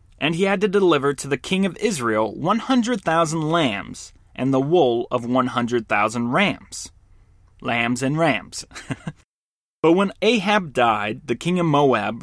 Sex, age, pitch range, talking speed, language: male, 30-49, 115-165 Hz, 140 wpm, English